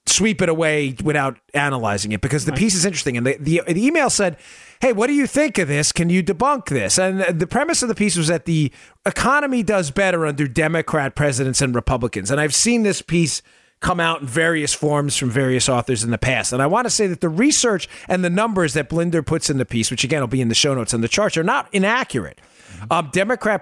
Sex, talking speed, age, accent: male, 240 wpm, 30-49, American